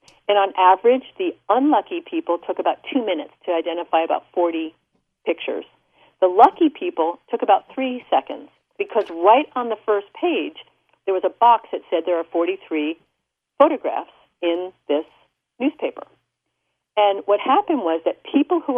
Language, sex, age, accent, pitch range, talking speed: English, female, 50-69, American, 175-245 Hz, 155 wpm